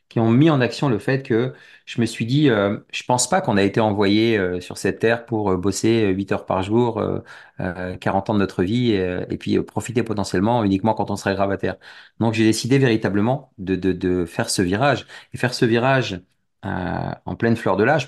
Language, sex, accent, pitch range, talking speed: French, male, French, 95-120 Hz, 240 wpm